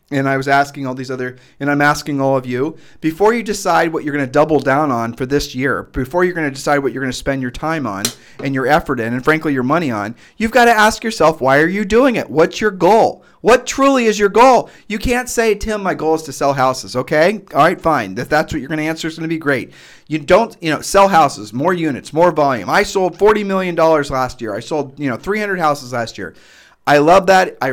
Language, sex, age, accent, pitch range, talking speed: English, male, 30-49, American, 130-175 Hz, 260 wpm